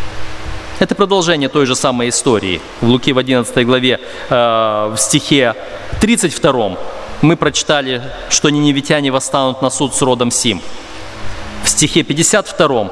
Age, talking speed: 30-49, 130 wpm